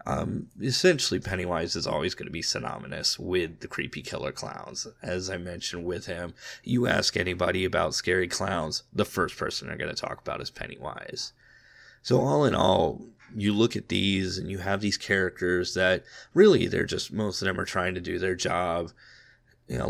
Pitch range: 90-110 Hz